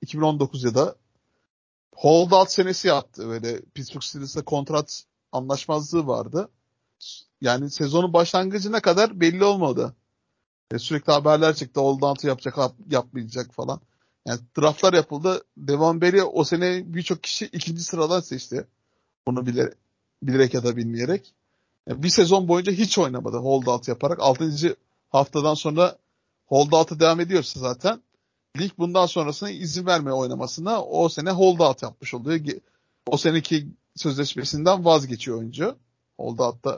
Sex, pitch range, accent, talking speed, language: male, 130-180 Hz, native, 125 wpm, Turkish